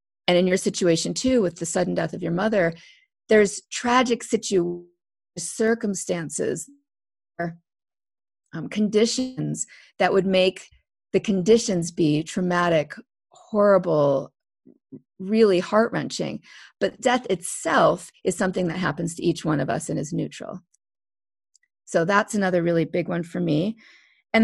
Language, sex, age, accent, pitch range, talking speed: English, female, 40-59, American, 175-230 Hz, 130 wpm